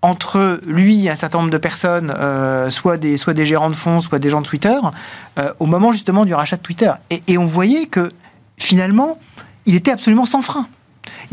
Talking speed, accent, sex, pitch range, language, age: 215 wpm, French, male, 170-225 Hz, French, 40-59